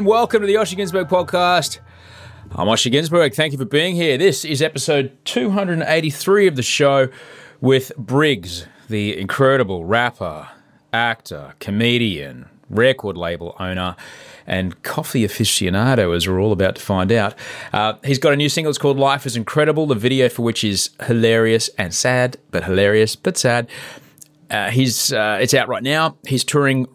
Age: 30-49